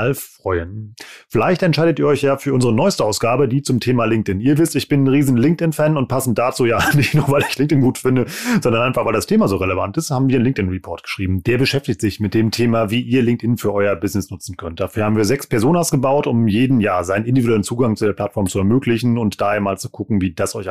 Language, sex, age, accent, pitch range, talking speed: German, male, 30-49, German, 100-130 Hz, 245 wpm